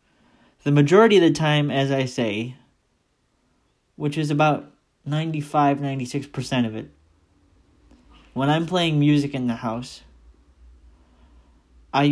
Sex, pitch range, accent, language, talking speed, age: male, 120-150 Hz, American, English, 110 wpm, 30-49